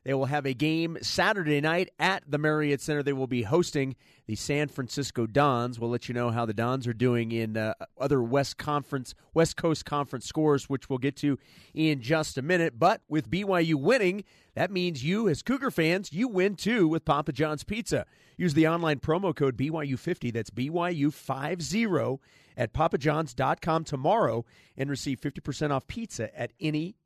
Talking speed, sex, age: 175 wpm, male, 40-59